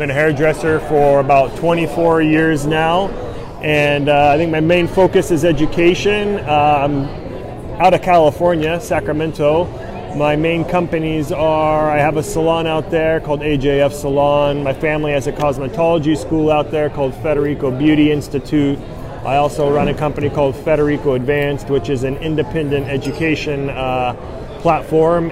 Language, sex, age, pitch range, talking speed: English, male, 30-49, 140-155 Hz, 145 wpm